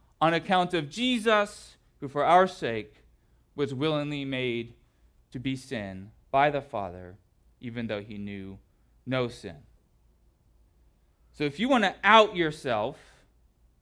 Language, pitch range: English, 135-200 Hz